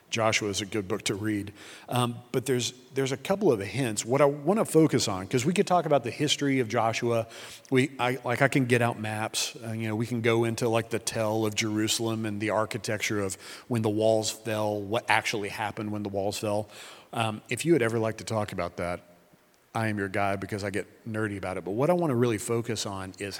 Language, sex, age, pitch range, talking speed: English, male, 40-59, 110-130 Hz, 240 wpm